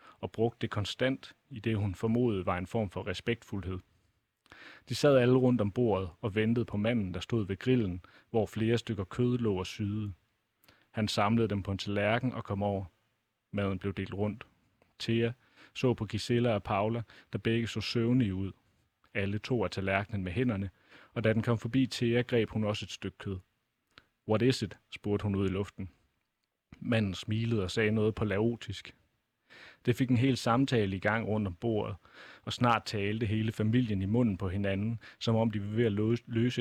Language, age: Danish, 30-49